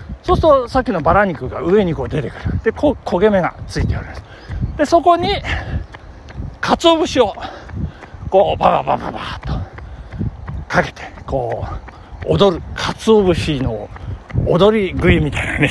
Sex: male